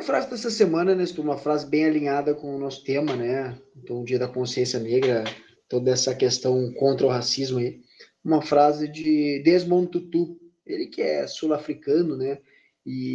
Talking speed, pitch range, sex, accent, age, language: 175 wpm, 145-185 Hz, male, Brazilian, 20-39, Portuguese